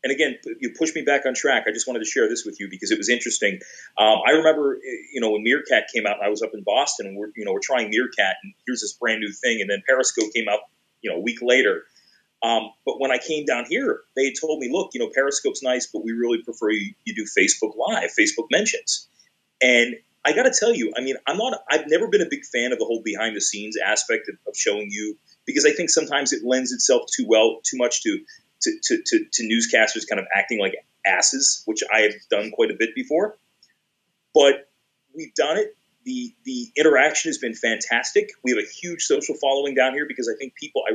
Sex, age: male, 30-49